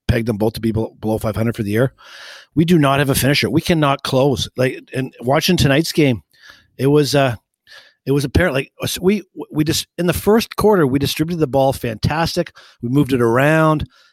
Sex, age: male, 50-69